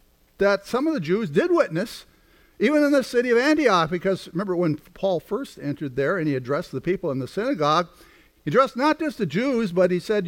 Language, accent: English, American